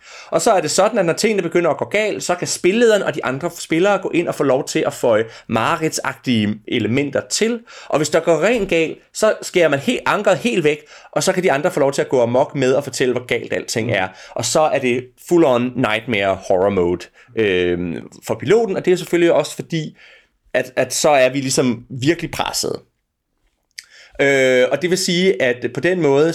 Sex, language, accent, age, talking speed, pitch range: male, Danish, native, 30-49, 220 wpm, 125-180 Hz